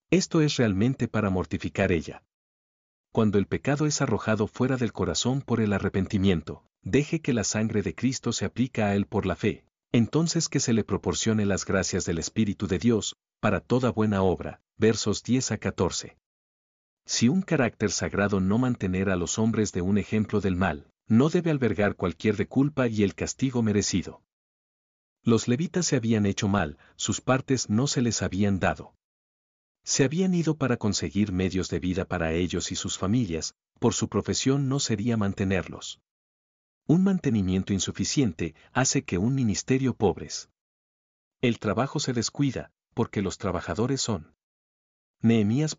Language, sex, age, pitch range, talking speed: Spanish, male, 50-69, 95-125 Hz, 160 wpm